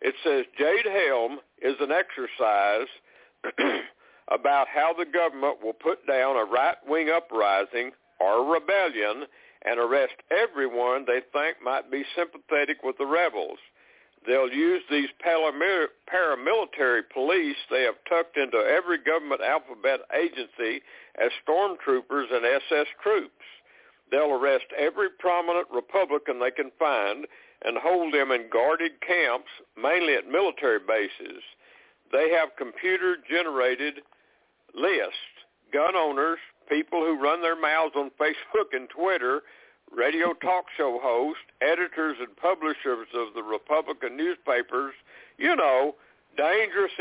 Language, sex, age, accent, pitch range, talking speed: English, male, 60-79, American, 140-215 Hz, 120 wpm